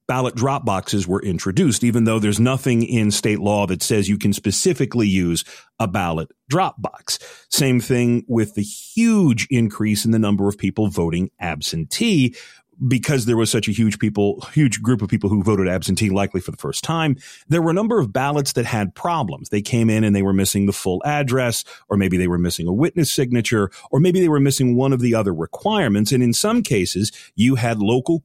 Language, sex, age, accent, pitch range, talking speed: English, male, 40-59, American, 100-130 Hz, 210 wpm